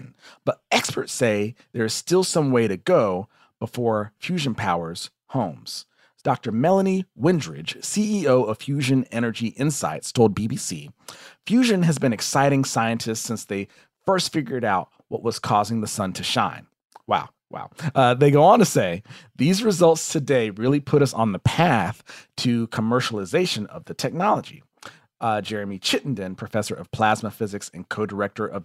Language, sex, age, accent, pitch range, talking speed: English, male, 40-59, American, 105-140 Hz, 155 wpm